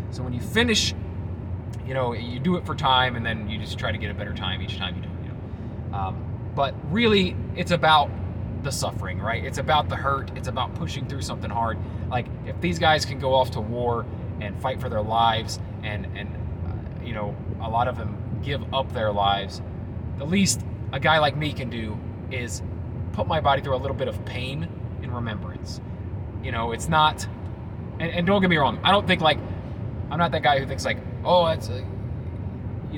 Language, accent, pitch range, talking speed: English, American, 105-130 Hz, 215 wpm